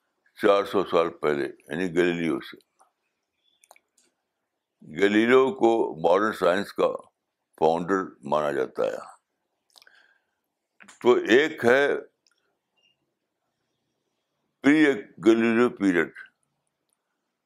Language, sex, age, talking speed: Urdu, male, 60-79, 65 wpm